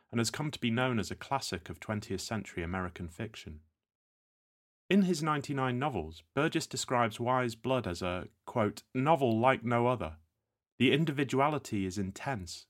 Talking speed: 155 wpm